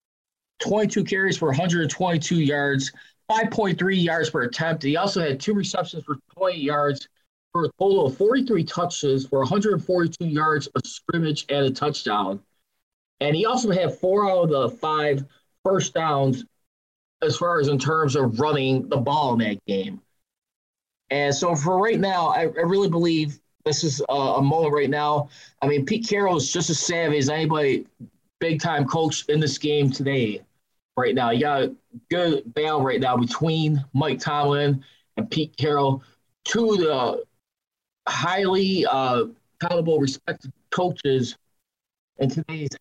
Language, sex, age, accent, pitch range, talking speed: English, male, 20-39, American, 135-170 Hz, 155 wpm